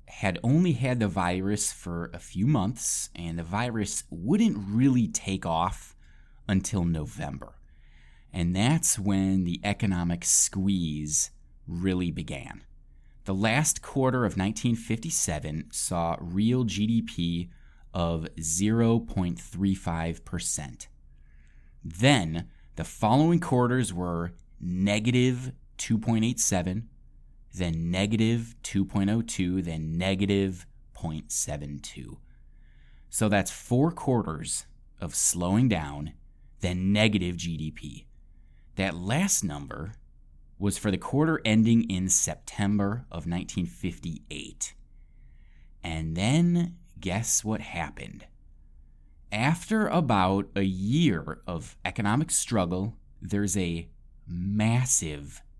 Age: 20-39